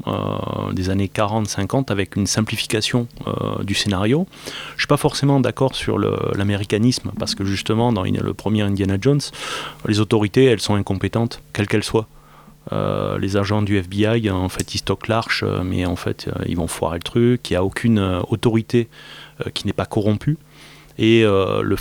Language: French